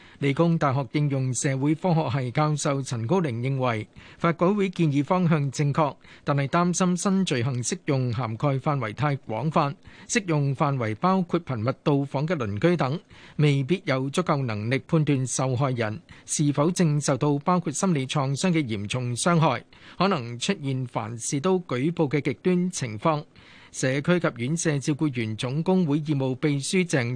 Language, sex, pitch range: Chinese, male, 130-170 Hz